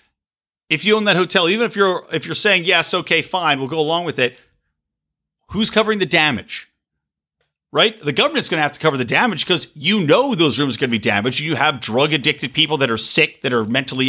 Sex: male